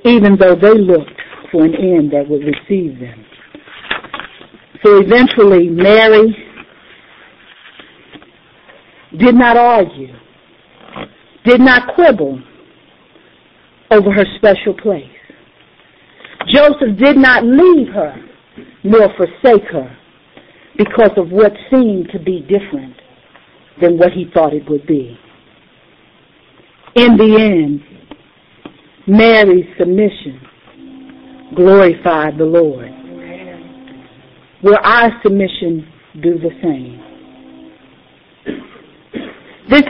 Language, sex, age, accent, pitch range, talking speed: English, female, 50-69, American, 170-260 Hz, 90 wpm